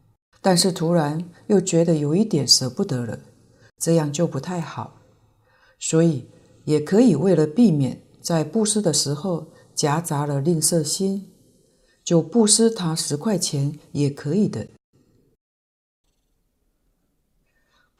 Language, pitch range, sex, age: Chinese, 145-195 Hz, female, 50-69